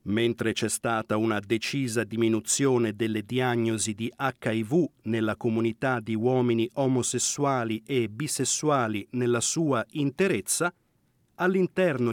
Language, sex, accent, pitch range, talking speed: Italian, male, native, 115-155 Hz, 105 wpm